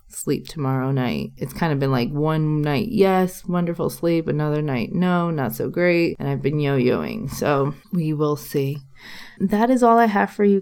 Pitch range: 150-185 Hz